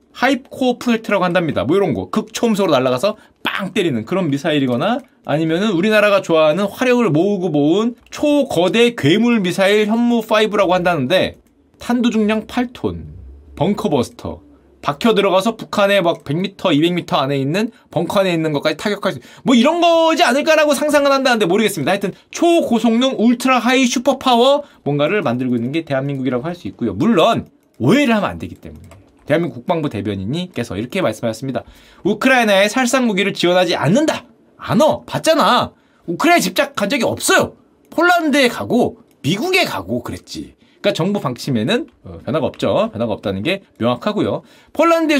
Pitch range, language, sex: 170-270 Hz, Korean, male